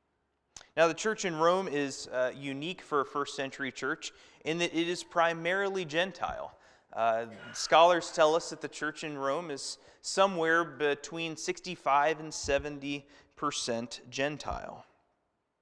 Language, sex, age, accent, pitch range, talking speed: English, male, 30-49, American, 125-170 Hz, 140 wpm